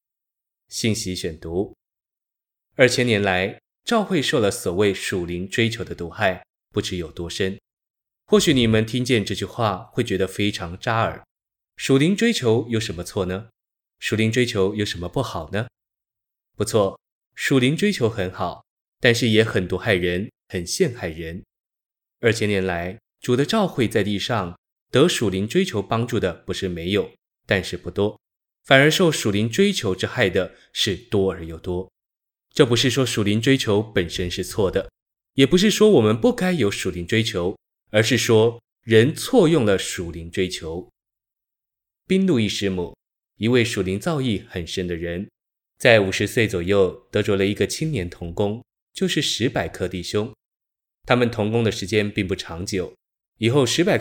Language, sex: Chinese, male